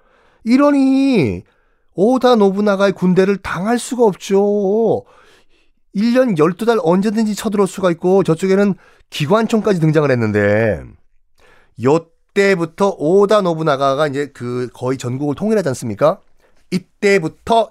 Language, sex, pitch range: Korean, male, 125-200 Hz